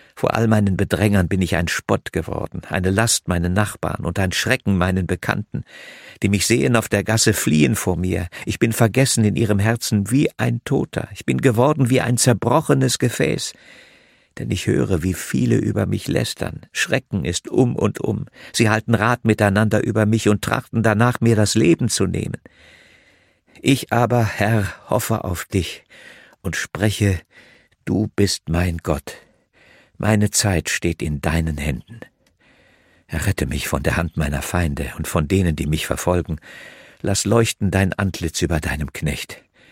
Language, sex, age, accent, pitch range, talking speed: German, male, 50-69, German, 80-110 Hz, 165 wpm